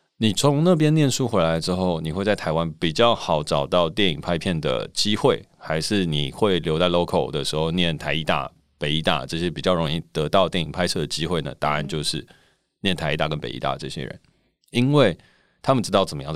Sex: male